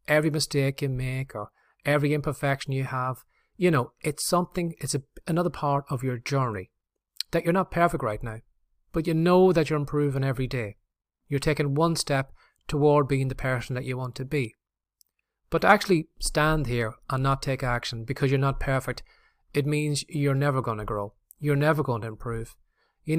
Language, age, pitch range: English, 30-49, 130-150 Hz